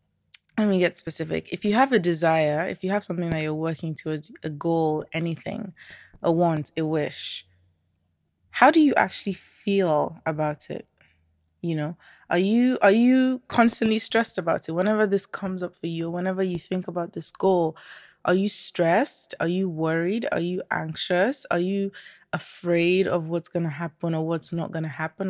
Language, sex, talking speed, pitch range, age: English, female, 180 wpm, 160-195 Hz, 20-39